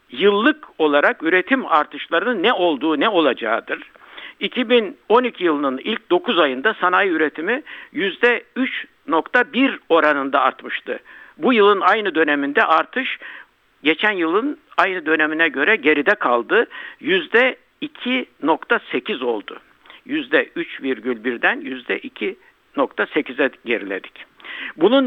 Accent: native